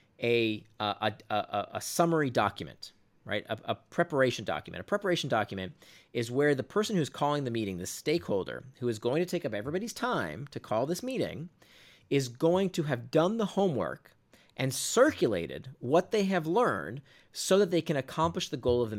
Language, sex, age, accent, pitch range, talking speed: English, male, 30-49, American, 120-175 Hz, 185 wpm